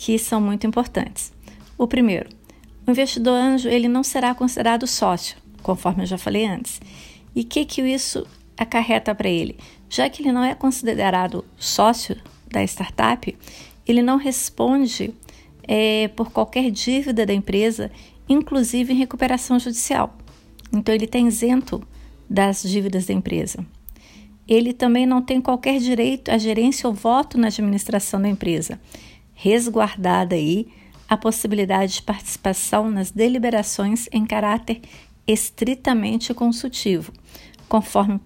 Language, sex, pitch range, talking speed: Portuguese, female, 205-245 Hz, 130 wpm